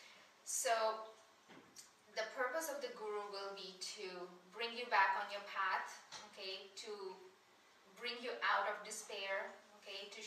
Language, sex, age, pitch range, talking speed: English, female, 20-39, 185-210 Hz, 140 wpm